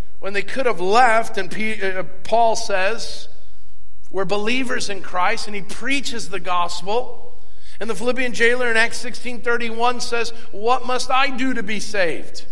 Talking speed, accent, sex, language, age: 155 wpm, American, male, English, 50-69